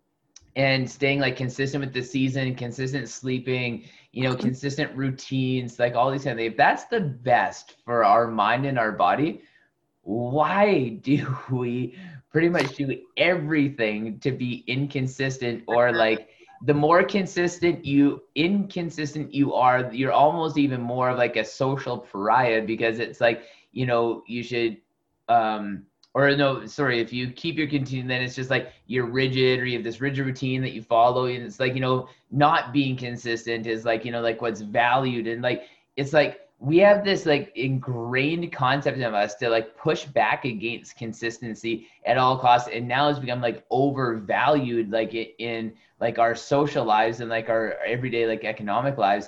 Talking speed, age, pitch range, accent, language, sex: 170 wpm, 20-39, 115-140 Hz, American, English, male